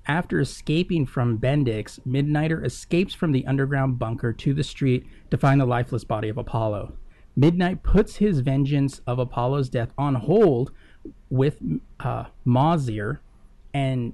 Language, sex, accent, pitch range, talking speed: English, male, American, 120-145 Hz, 140 wpm